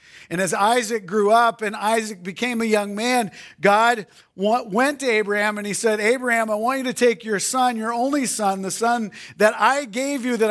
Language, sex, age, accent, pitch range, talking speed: English, male, 40-59, American, 155-230 Hz, 205 wpm